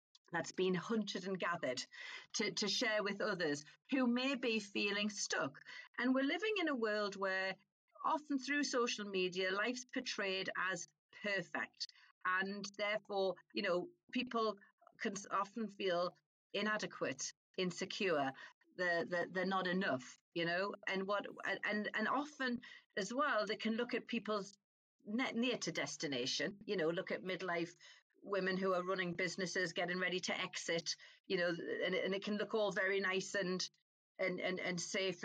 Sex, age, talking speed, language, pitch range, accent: female, 40-59, 155 wpm, English, 185-225 Hz, British